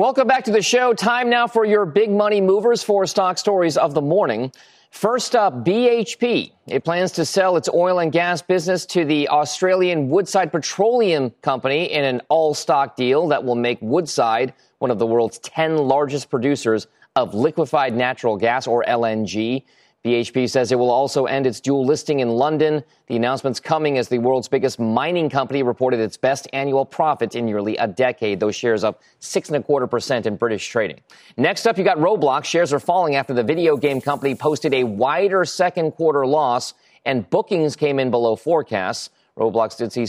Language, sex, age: English, male, 30-49